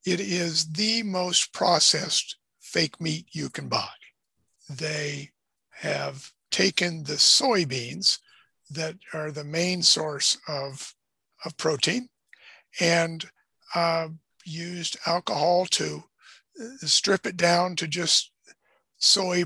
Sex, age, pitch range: male, 50-69, 155-180 Hz